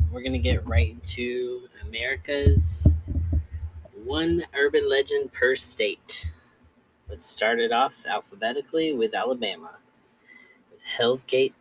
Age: 20-39